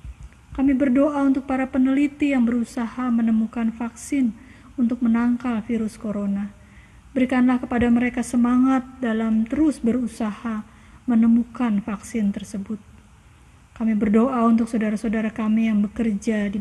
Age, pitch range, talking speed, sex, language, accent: 20-39, 205-245 Hz, 110 wpm, female, Indonesian, native